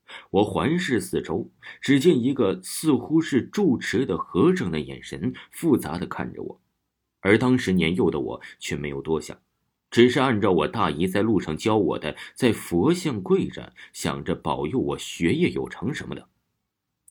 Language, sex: Chinese, male